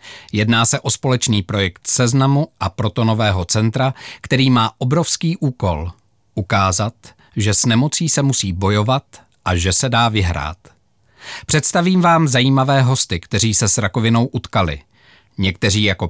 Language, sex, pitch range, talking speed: Czech, male, 100-135 Hz, 135 wpm